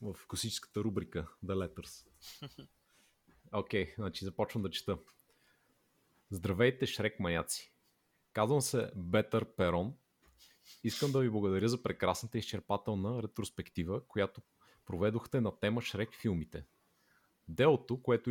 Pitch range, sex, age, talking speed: 95-120 Hz, male, 30-49, 110 wpm